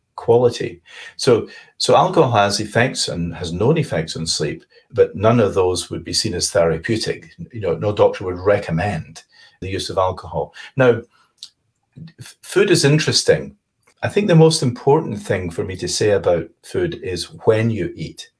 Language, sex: English, male